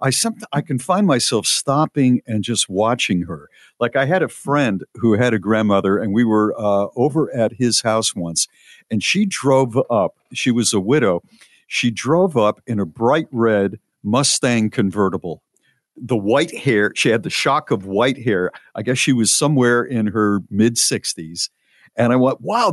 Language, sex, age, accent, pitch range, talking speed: English, male, 50-69, American, 105-140 Hz, 175 wpm